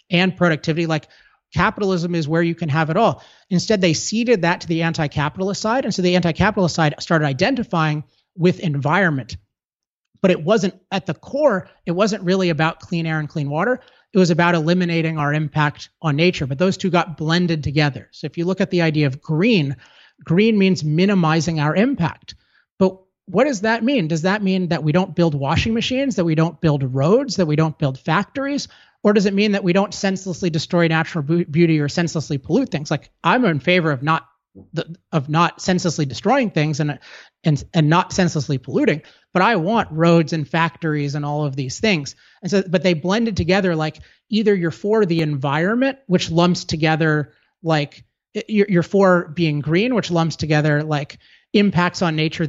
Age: 30-49